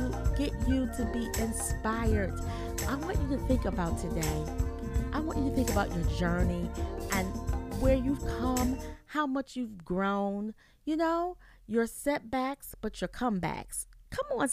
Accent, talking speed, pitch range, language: American, 155 wpm, 190-260 Hz, English